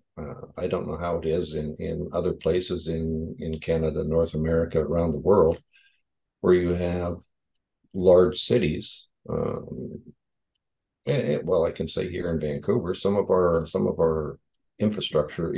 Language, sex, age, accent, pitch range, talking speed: English, male, 60-79, American, 80-100 Hz, 160 wpm